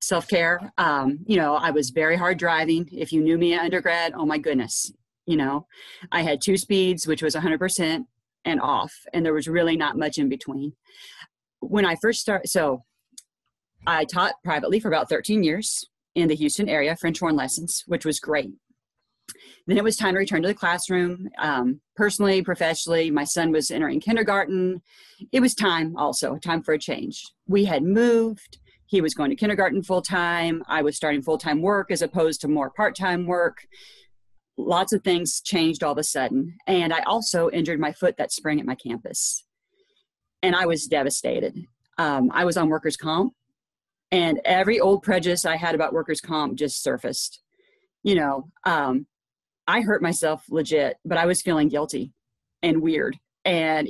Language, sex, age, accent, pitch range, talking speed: English, female, 40-59, American, 155-190 Hz, 175 wpm